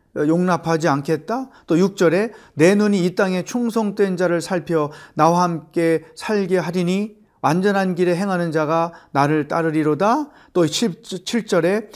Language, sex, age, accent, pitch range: Korean, male, 40-59, native, 155-190 Hz